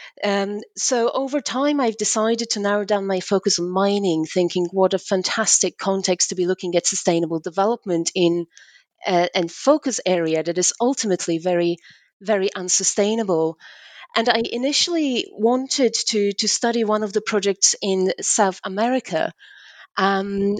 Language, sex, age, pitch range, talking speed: English, female, 30-49, 185-230 Hz, 150 wpm